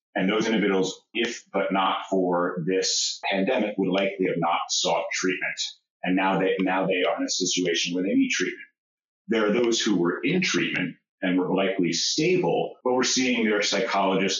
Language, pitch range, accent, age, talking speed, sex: English, 90-105 Hz, American, 30-49, 185 wpm, male